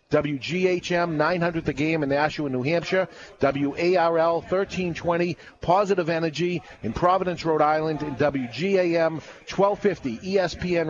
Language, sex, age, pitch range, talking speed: English, male, 40-59, 130-165 Hz, 110 wpm